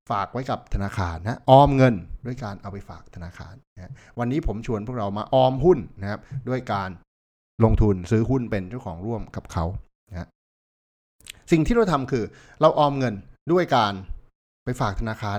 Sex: male